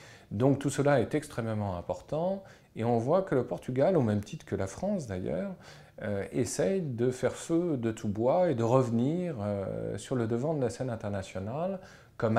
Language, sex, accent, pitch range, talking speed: French, male, French, 95-135 Hz, 190 wpm